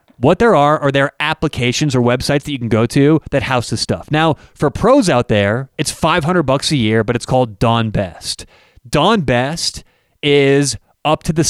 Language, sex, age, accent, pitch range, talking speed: English, male, 30-49, American, 125-175 Hz, 200 wpm